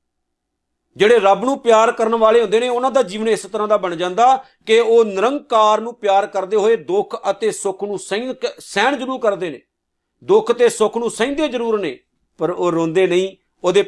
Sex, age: male, 50-69